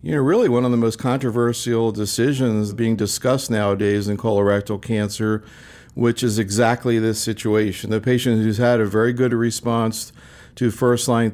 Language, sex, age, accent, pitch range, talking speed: English, male, 50-69, American, 110-120 Hz, 160 wpm